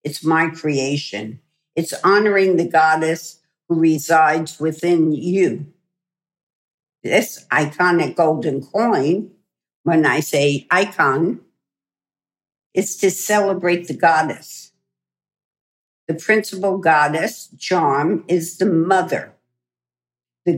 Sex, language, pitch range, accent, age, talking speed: female, English, 145-170 Hz, American, 60-79, 95 wpm